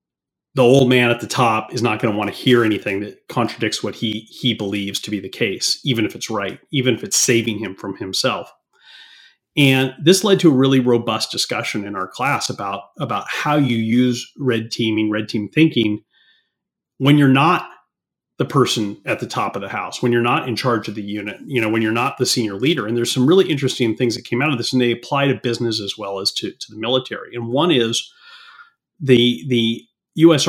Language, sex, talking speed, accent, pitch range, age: English, male, 220 wpm, American, 115-135 Hz, 30-49